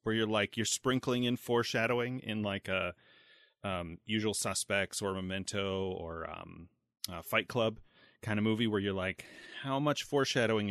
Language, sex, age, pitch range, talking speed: English, male, 30-49, 95-120 Hz, 155 wpm